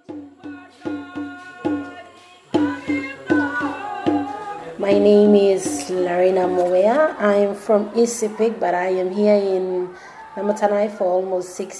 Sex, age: female, 30-49